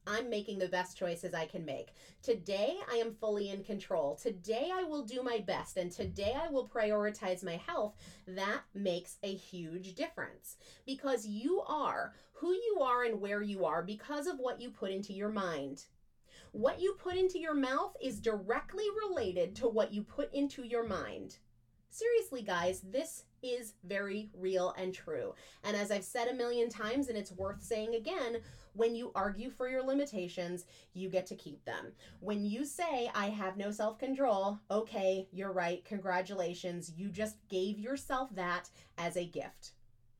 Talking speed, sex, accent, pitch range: 175 wpm, female, American, 185-250 Hz